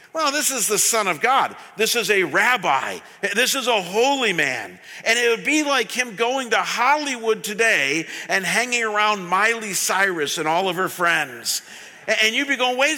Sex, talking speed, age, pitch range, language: male, 190 wpm, 50-69, 200-250 Hz, English